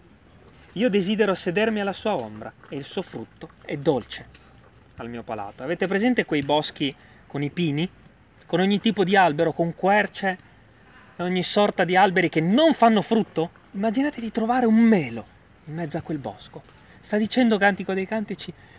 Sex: male